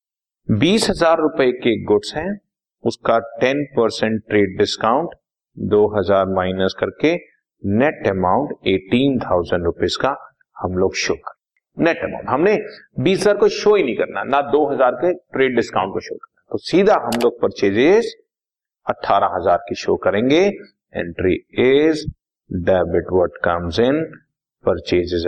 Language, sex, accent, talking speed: Hindi, male, native, 125 wpm